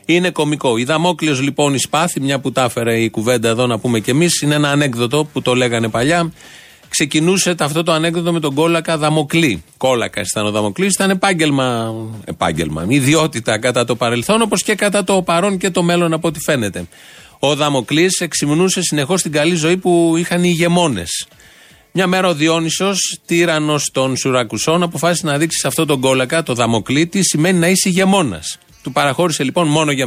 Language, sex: Greek, male